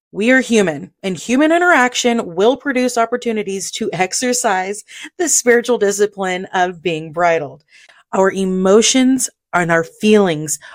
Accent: American